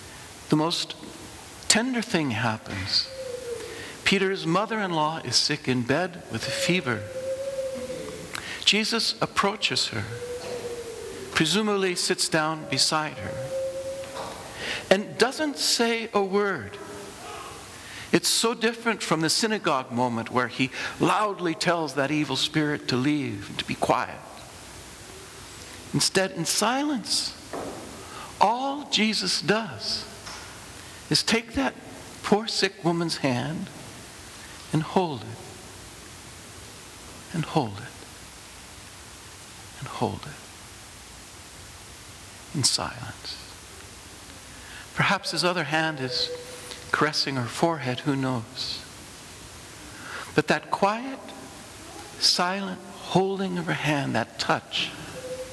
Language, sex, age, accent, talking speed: English, male, 60-79, American, 100 wpm